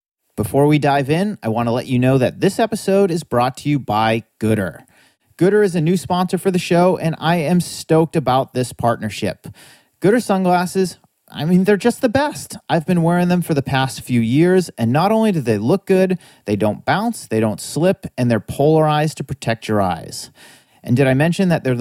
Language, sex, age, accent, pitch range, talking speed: English, male, 30-49, American, 115-165 Hz, 210 wpm